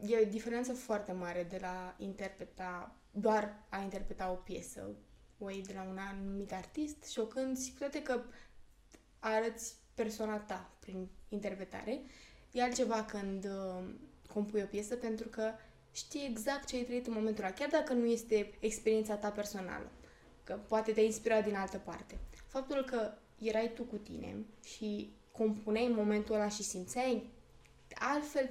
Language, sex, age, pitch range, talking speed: Romanian, female, 20-39, 200-235 Hz, 150 wpm